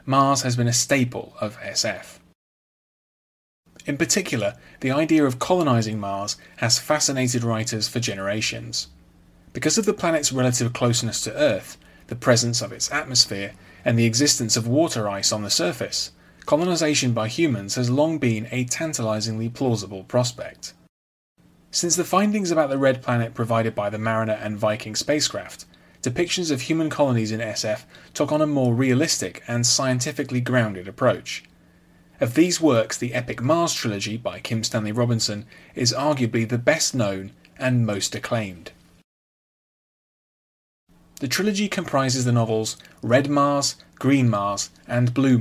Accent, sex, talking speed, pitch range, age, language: British, male, 145 wpm, 110-140 Hz, 30-49, English